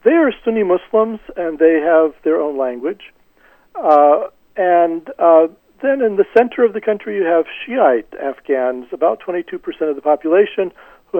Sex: male